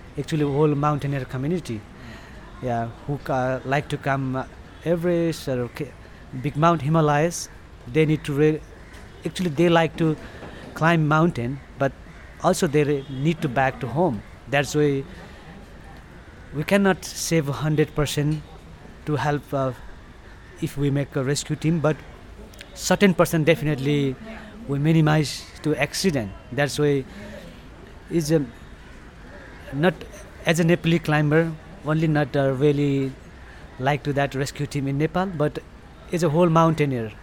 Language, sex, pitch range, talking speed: English, male, 135-160 Hz, 140 wpm